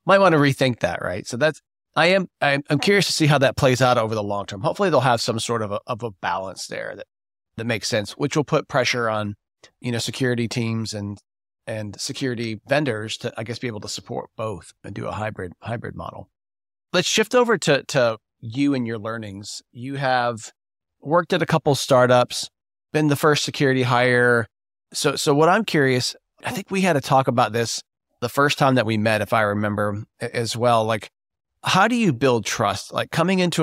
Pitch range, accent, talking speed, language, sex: 110-140 Hz, American, 210 wpm, English, male